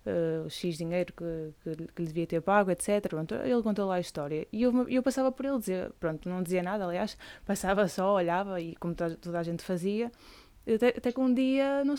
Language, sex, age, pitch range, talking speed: Portuguese, female, 20-39, 180-215 Hz, 220 wpm